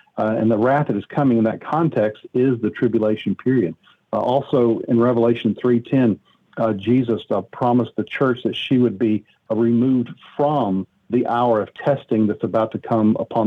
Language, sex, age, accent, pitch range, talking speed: English, male, 50-69, American, 110-125 Hz, 180 wpm